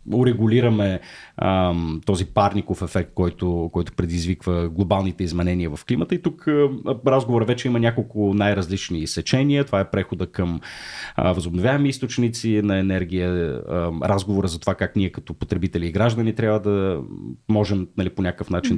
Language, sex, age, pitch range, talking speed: Bulgarian, male, 30-49, 90-115 Hz, 145 wpm